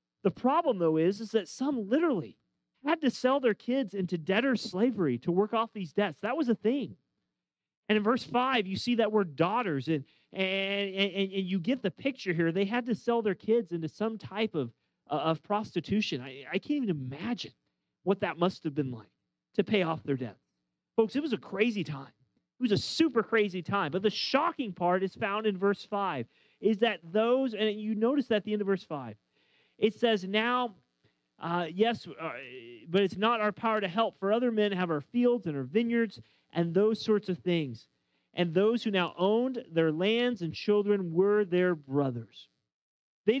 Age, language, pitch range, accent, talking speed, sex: 30-49, English, 175-235 Hz, American, 200 wpm, male